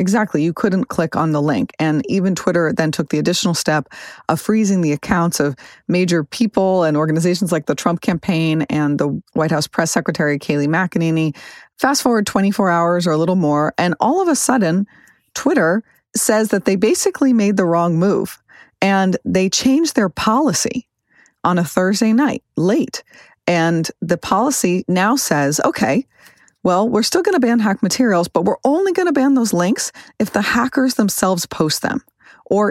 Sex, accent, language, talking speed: female, American, English, 180 wpm